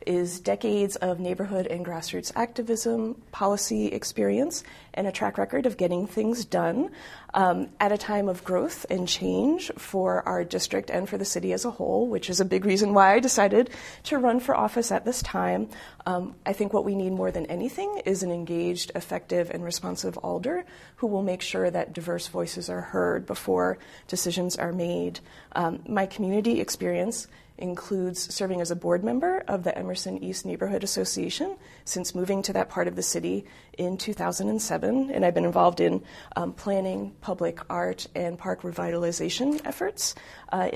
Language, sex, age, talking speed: English, female, 30-49, 175 wpm